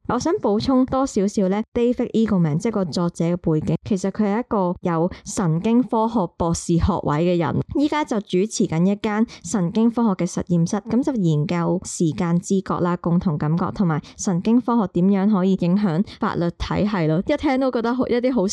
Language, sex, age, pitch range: Chinese, male, 20-39, 170-220 Hz